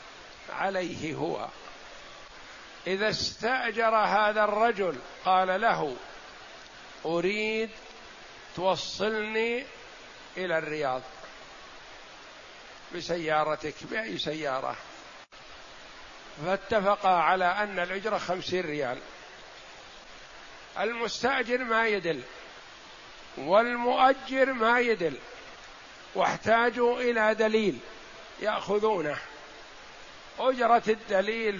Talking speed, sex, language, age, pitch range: 65 wpm, male, Arabic, 60-79, 175-220 Hz